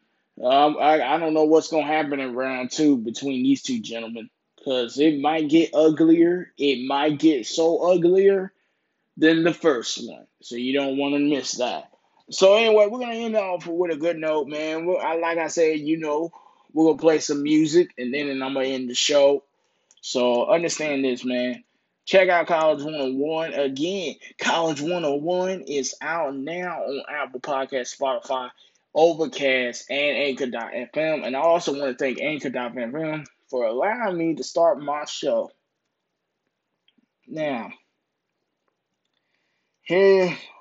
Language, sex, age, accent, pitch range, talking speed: English, male, 20-39, American, 135-165 Hz, 150 wpm